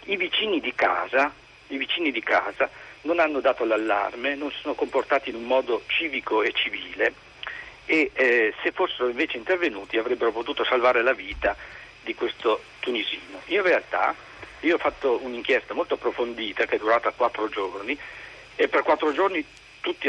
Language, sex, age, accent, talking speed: Italian, male, 50-69, native, 160 wpm